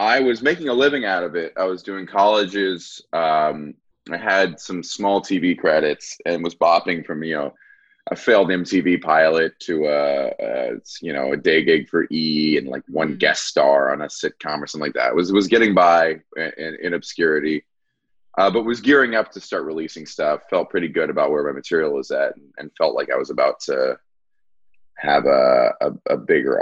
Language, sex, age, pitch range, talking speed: English, male, 20-39, 75-120 Hz, 205 wpm